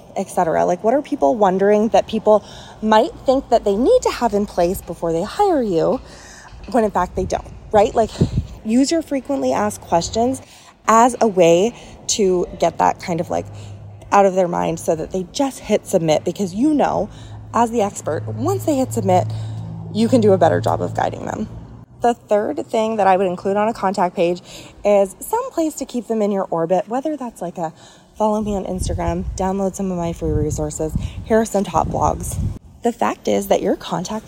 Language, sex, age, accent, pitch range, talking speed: English, female, 20-39, American, 180-245 Hz, 205 wpm